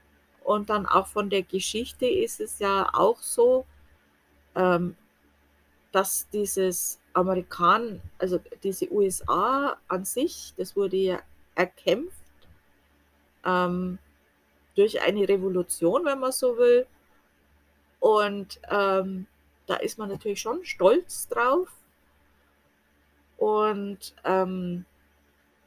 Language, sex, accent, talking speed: German, female, German, 100 wpm